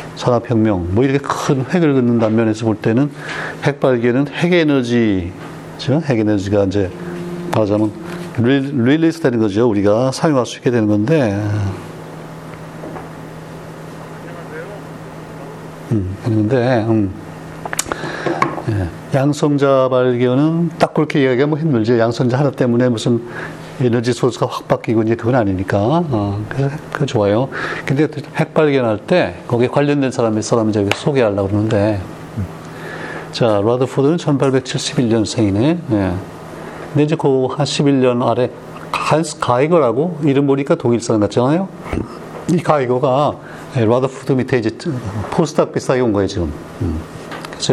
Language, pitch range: Korean, 110-145 Hz